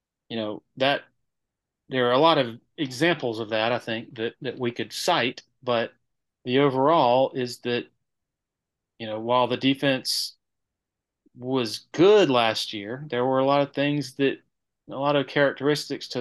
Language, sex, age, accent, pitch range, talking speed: English, male, 30-49, American, 120-145 Hz, 165 wpm